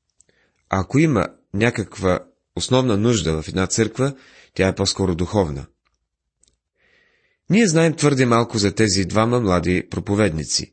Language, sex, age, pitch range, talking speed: Bulgarian, male, 30-49, 90-130 Hz, 125 wpm